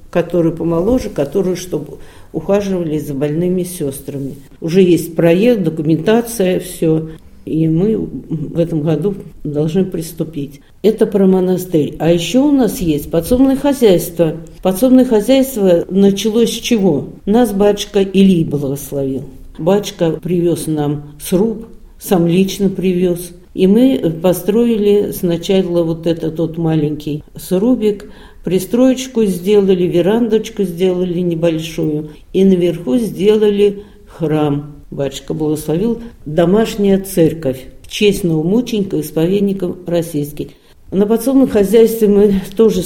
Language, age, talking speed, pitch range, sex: Russian, 50-69, 110 wpm, 160-205 Hz, female